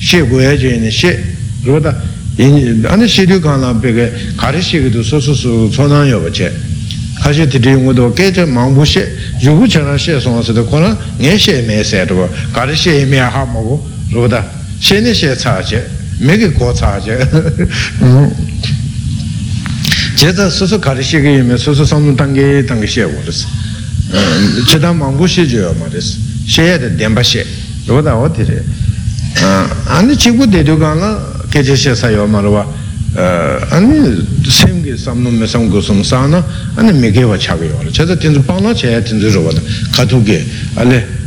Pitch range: 110-140 Hz